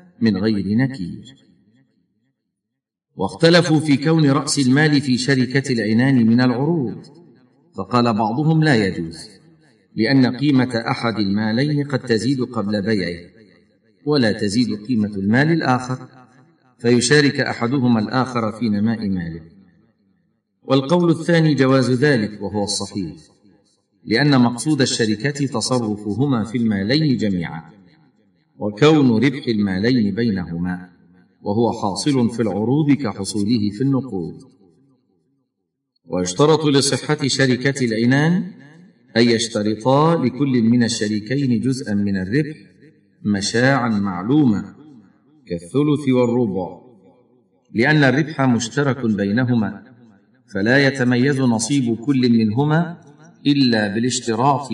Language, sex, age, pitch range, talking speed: Arabic, male, 50-69, 110-140 Hz, 95 wpm